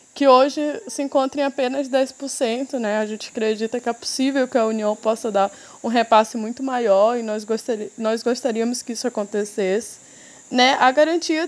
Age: 10-29